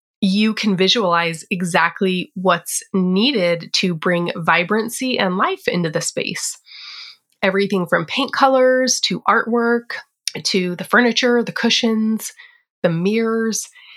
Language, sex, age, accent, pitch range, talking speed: English, female, 20-39, American, 180-225 Hz, 115 wpm